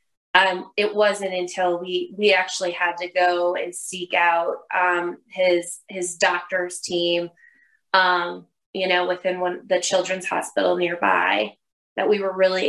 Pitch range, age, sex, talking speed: 185-215 Hz, 20-39, female, 145 wpm